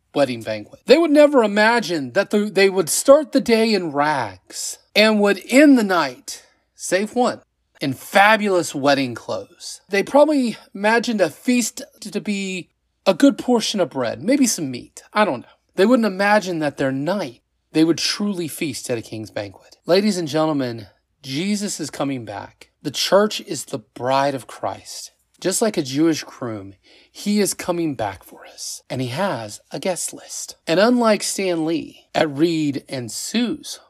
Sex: male